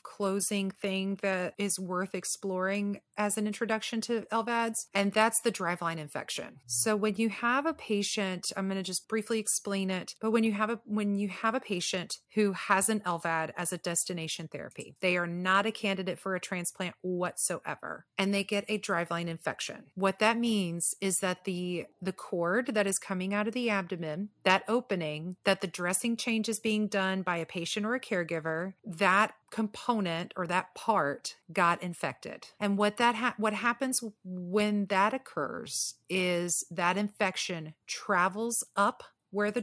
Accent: American